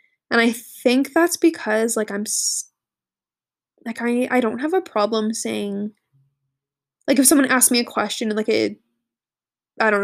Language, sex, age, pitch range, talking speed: English, female, 20-39, 205-250 Hz, 155 wpm